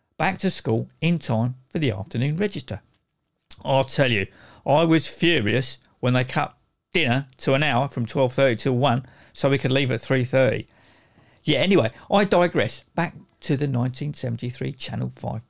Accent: British